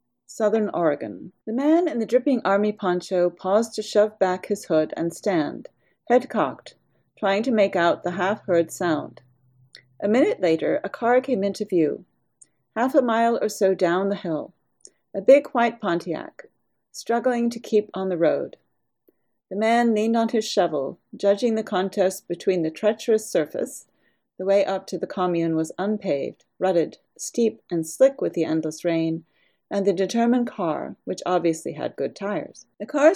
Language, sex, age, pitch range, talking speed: English, female, 40-59, 170-215 Hz, 165 wpm